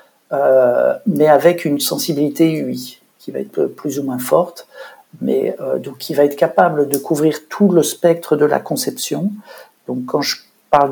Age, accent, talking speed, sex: 60-79, French, 175 wpm, male